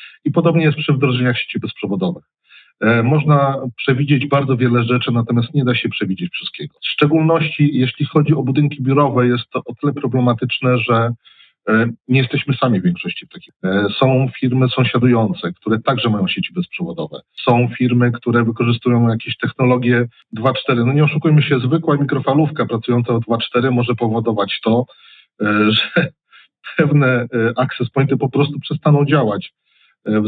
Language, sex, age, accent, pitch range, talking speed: Polish, male, 40-59, native, 115-135 Hz, 155 wpm